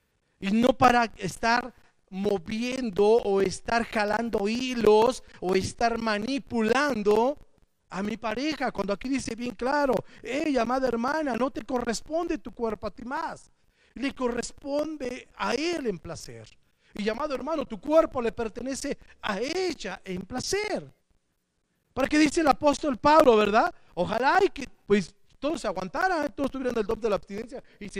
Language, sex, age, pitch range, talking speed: Spanish, male, 40-59, 205-260 Hz, 155 wpm